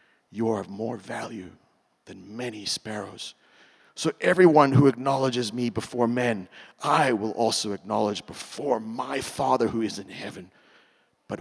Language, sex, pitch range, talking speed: English, male, 110-140 Hz, 140 wpm